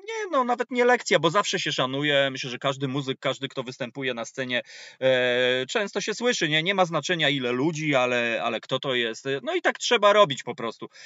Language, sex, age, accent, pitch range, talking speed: Polish, male, 30-49, native, 130-180 Hz, 210 wpm